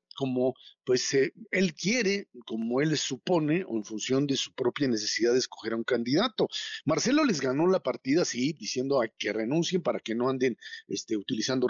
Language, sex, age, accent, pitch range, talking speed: Spanish, male, 50-69, Mexican, 125-190 Hz, 185 wpm